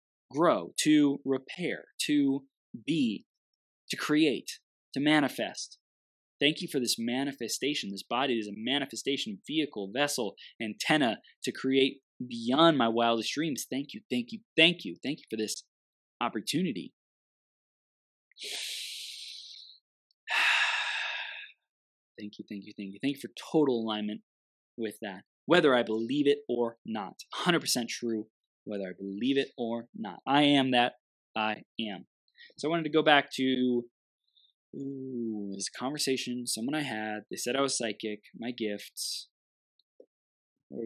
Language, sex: English, male